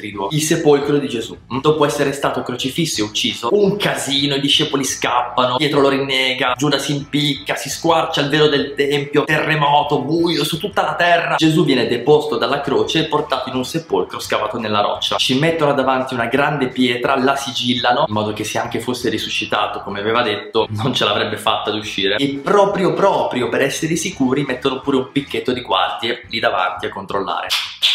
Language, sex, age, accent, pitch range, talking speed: Italian, male, 20-39, native, 130-160 Hz, 185 wpm